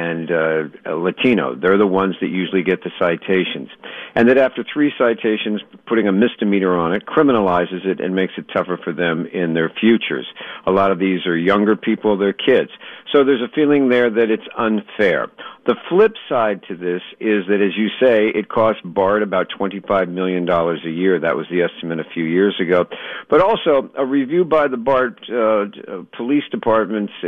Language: English